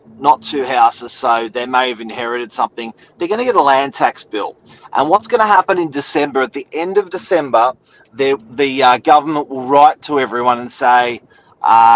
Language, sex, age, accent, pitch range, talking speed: English, male, 30-49, Australian, 115-140 Hz, 195 wpm